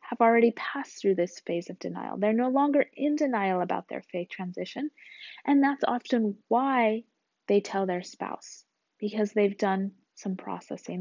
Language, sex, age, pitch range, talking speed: English, female, 30-49, 195-270 Hz, 165 wpm